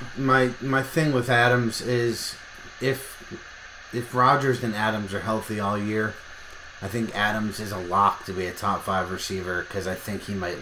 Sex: male